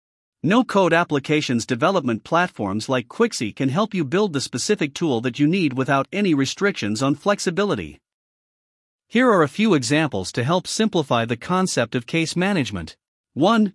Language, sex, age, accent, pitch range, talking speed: English, male, 50-69, American, 135-200 Hz, 155 wpm